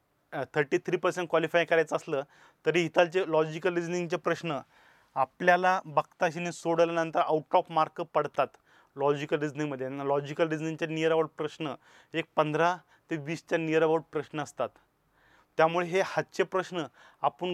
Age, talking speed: 30-49, 130 wpm